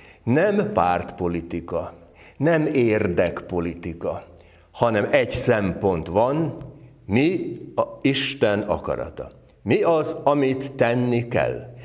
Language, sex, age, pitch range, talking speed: Hungarian, male, 60-79, 90-120 Hz, 85 wpm